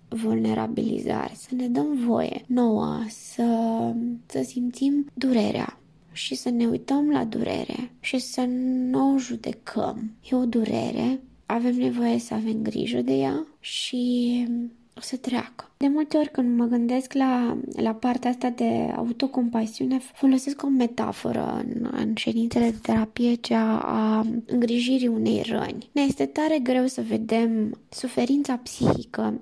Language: Romanian